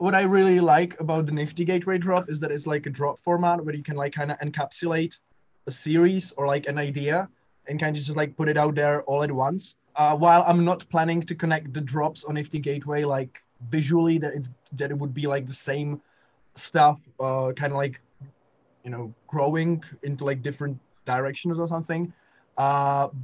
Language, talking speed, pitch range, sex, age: English, 200 wpm, 140-165 Hz, male, 20-39